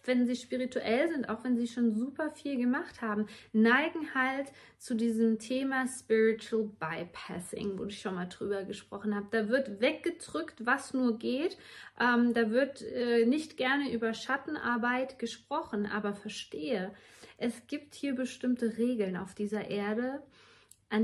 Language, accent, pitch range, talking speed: German, German, 215-290 Hz, 150 wpm